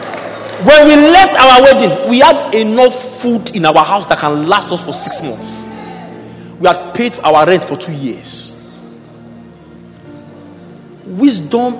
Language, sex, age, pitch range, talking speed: English, male, 50-69, 180-270 Hz, 140 wpm